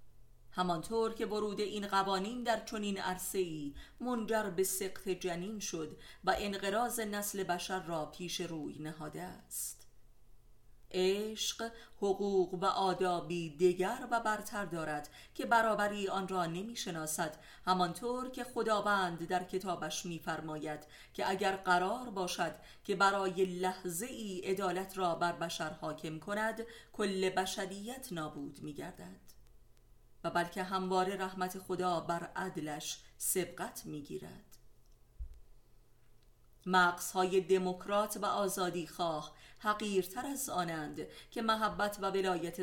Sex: female